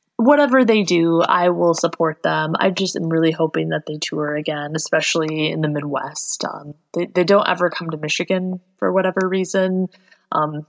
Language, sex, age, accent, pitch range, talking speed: English, female, 20-39, American, 165-200 Hz, 180 wpm